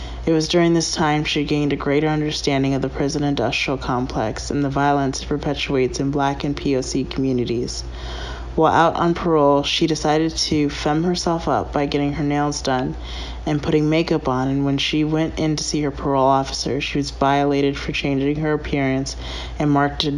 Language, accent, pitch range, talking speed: English, American, 135-155 Hz, 190 wpm